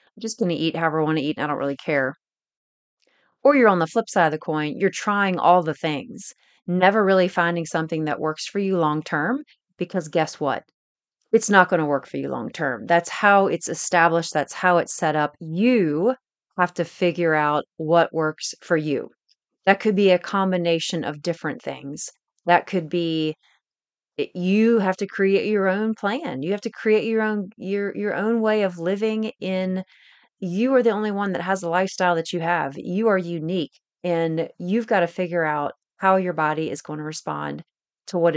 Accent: American